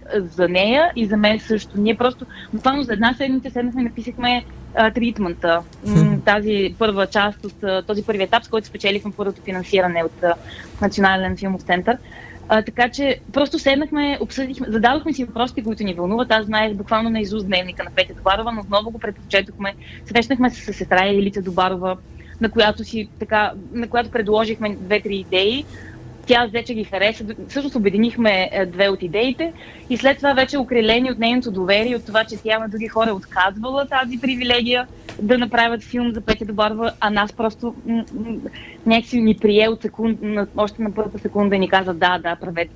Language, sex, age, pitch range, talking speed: Bulgarian, female, 20-39, 195-240 Hz, 180 wpm